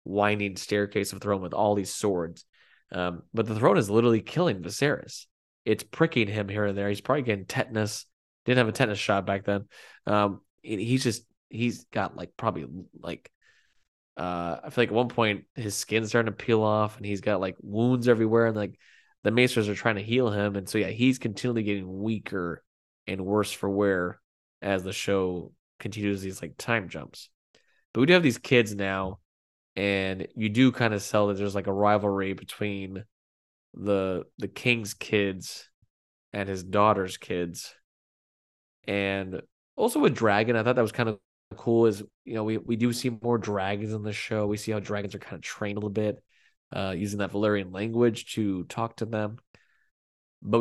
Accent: American